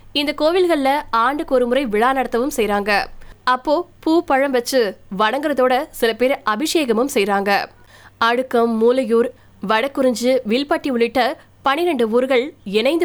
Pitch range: 225-275 Hz